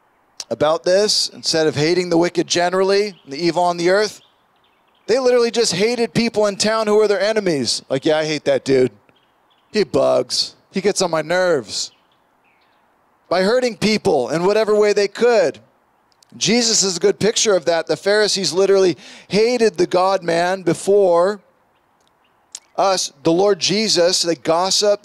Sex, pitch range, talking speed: male, 170-205 Hz, 155 wpm